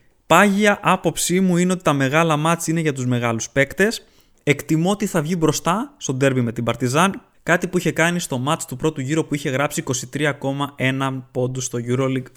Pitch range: 130-175 Hz